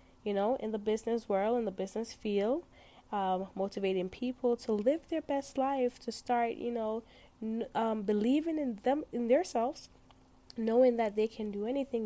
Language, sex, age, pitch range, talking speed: English, female, 10-29, 205-255 Hz, 175 wpm